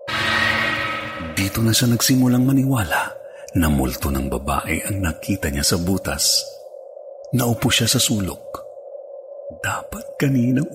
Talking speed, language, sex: 110 wpm, Filipino, male